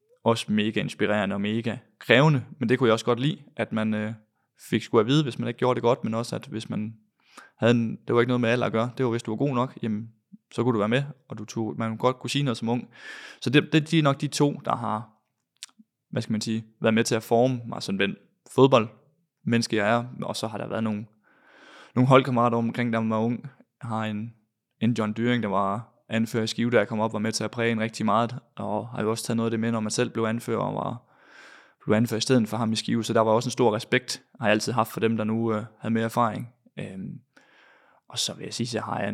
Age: 20-39